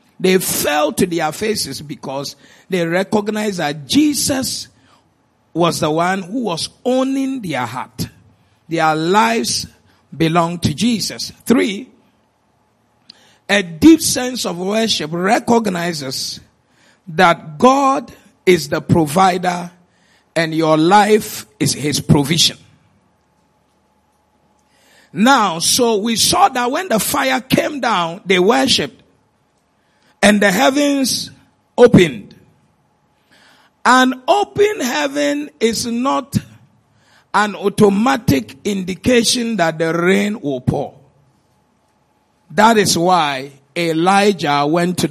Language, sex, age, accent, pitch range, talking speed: English, male, 50-69, Nigerian, 160-230 Hz, 100 wpm